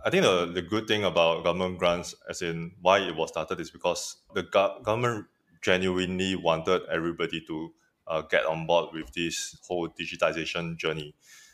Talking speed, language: 165 wpm, English